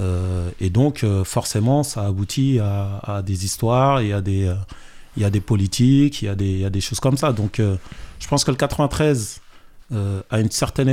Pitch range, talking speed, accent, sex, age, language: 100-130 Hz, 200 wpm, French, male, 30-49, French